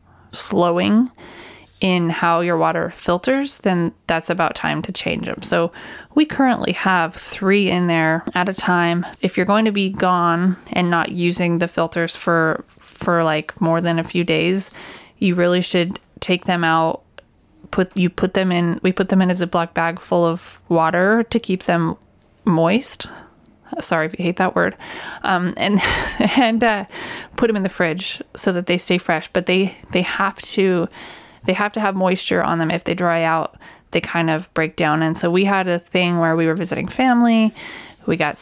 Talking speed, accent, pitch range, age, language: 190 wpm, American, 165-190 Hz, 20-39, English